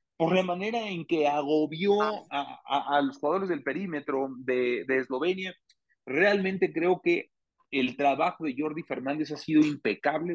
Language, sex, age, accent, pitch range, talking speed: Spanish, male, 40-59, Mexican, 130-175 Hz, 155 wpm